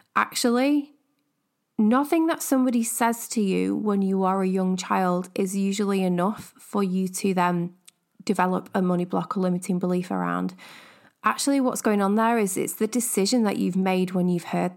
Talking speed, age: 175 wpm, 20-39